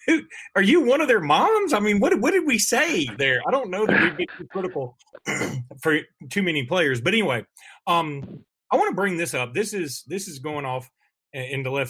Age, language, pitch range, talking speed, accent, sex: 40-59, English, 135-200 Hz, 225 wpm, American, male